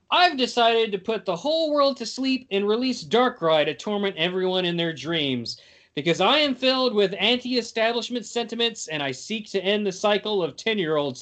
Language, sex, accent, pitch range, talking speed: English, male, American, 165-240 Hz, 180 wpm